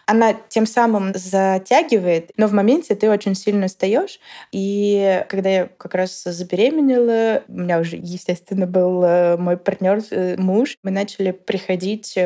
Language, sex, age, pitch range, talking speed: Russian, female, 20-39, 180-210 Hz, 135 wpm